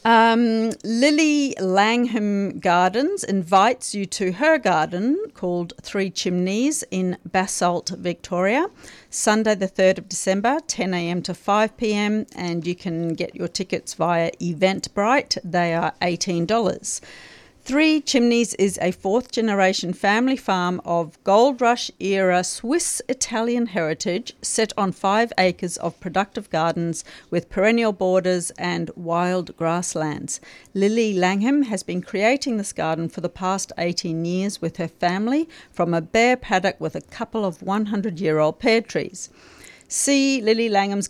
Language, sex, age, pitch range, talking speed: English, female, 40-59, 175-230 Hz, 135 wpm